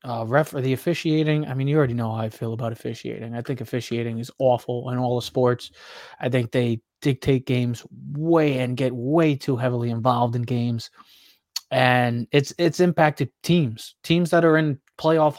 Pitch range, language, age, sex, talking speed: 120-155 Hz, English, 20-39, male, 185 wpm